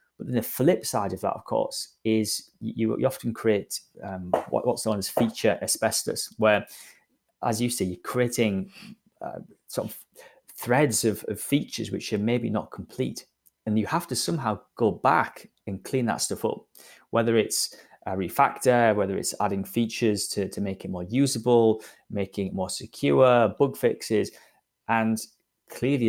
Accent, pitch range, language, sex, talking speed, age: British, 95-115 Hz, English, male, 170 wpm, 20-39